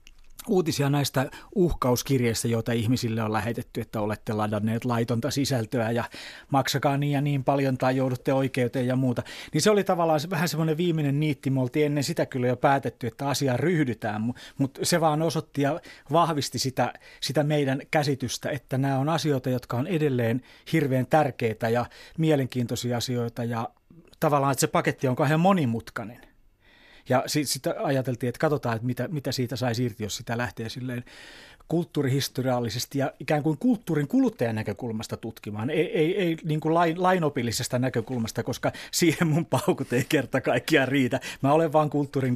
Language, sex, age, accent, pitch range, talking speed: Finnish, male, 30-49, native, 120-155 Hz, 155 wpm